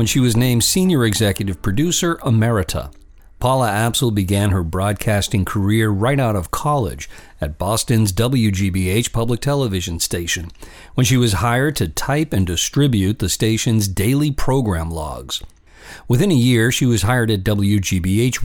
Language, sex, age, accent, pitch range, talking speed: English, male, 50-69, American, 95-125 Hz, 145 wpm